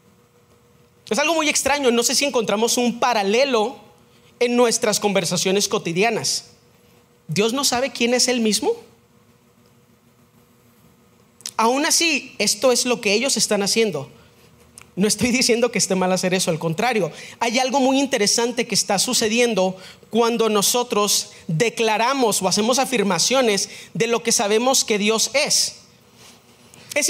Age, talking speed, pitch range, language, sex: 40-59, 135 wpm, 200-250 Hz, Spanish, male